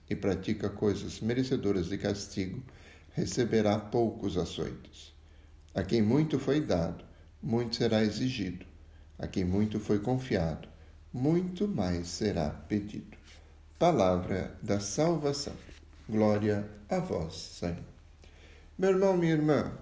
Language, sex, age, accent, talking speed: Portuguese, male, 60-79, Brazilian, 110 wpm